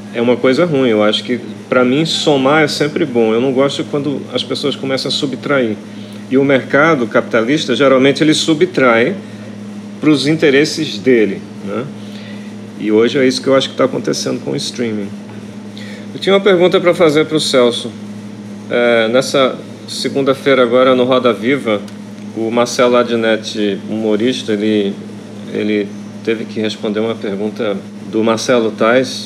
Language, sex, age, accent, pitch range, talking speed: Portuguese, male, 40-59, Brazilian, 105-130 Hz, 160 wpm